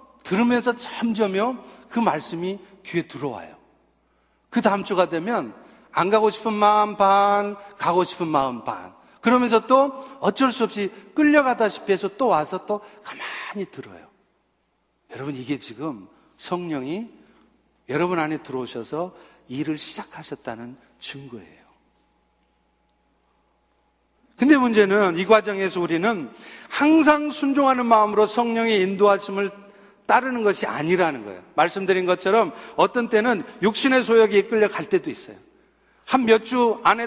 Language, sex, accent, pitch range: Korean, male, native, 180-235 Hz